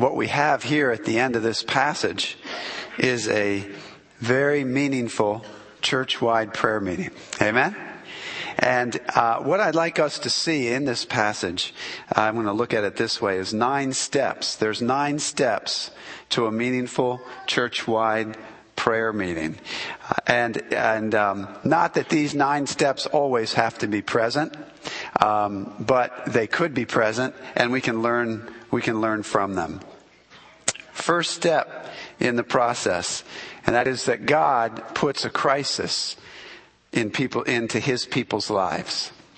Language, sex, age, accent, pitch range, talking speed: English, male, 50-69, American, 110-130 Hz, 145 wpm